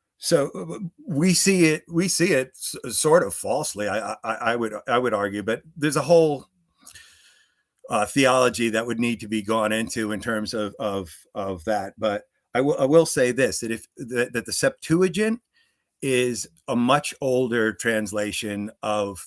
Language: English